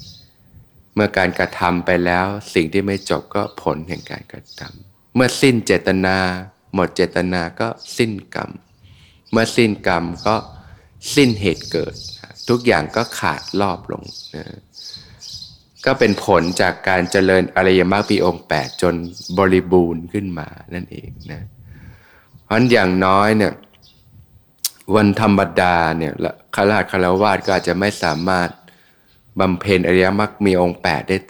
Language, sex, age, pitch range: Thai, male, 20-39, 90-105 Hz